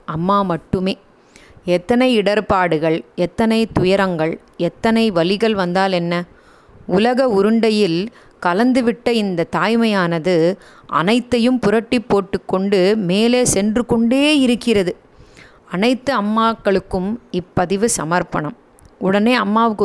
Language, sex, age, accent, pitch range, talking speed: Tamil, female, 30-49, native, 175-225 Hz, 85 wpm